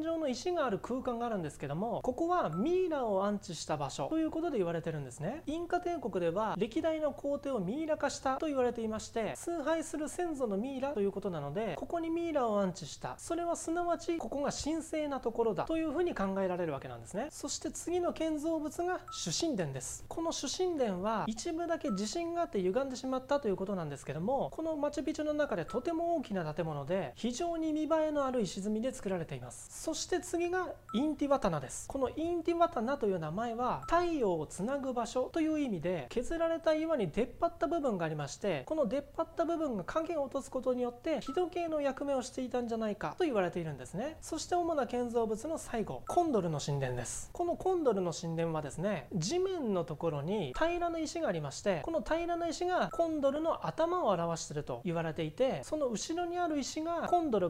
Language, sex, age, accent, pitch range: Japanese, male, 30-49, native, 195-325 Hz